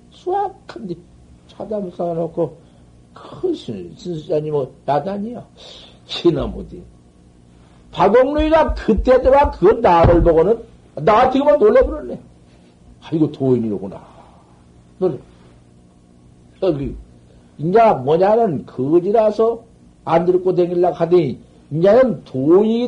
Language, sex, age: Korean, male, 60-79